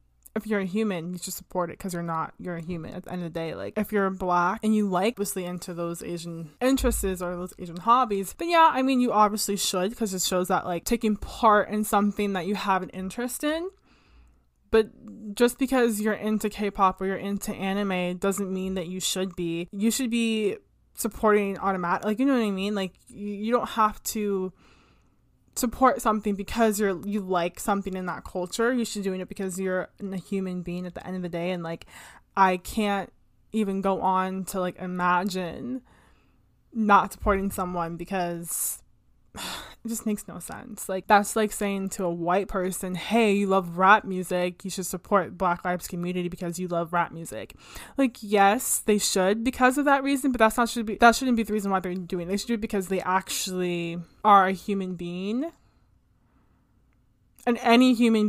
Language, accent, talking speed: English, American, 200 wpm